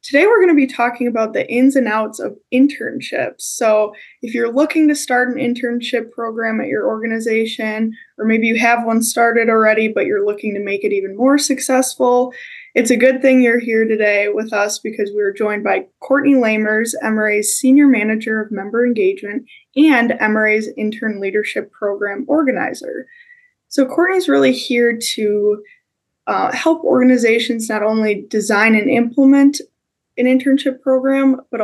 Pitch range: 215-270 Hz